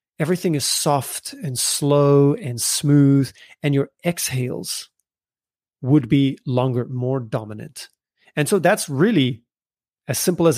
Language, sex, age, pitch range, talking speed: English, male, 30-49, 130-165 Hz, 125 wpm